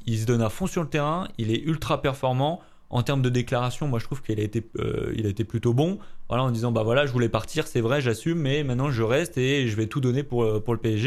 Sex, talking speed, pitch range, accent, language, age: male, 280 wpm, 115-150 Hz, French, French, 20-39